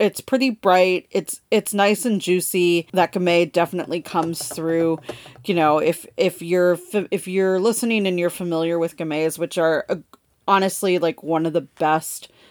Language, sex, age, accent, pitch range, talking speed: English, female, 30-49, American, 160-185 Hz, 170 wpm